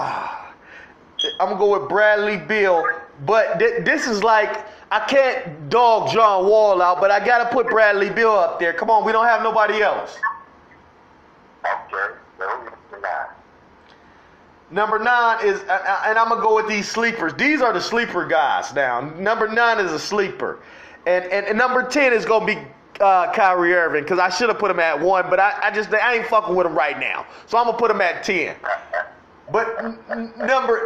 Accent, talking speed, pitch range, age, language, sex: American, 190 wpm, 200-250 Hz, 30-49, English, male